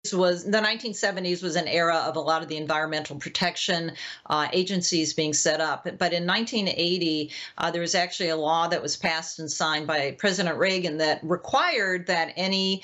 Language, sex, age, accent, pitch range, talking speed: English, female, 50-69, American, 165-200 Hz, 180 wpm